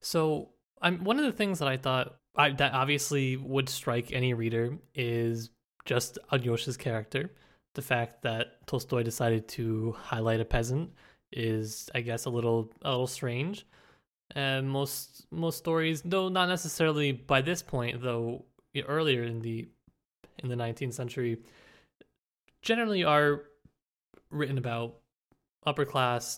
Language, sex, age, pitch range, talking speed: English, male, 20-39, 120-150 Hz, 140 wpm